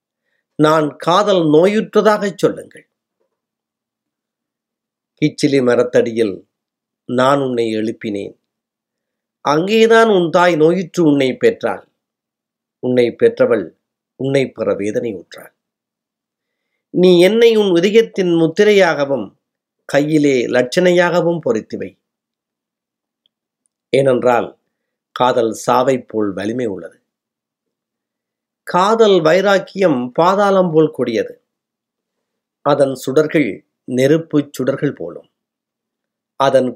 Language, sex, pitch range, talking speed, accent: Tamil, male, 135-200 Hz, 75 wpm, native